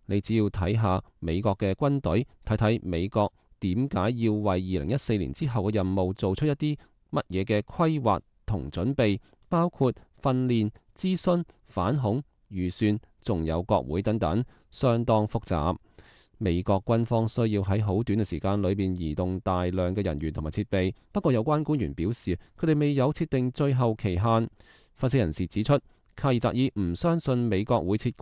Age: 20-39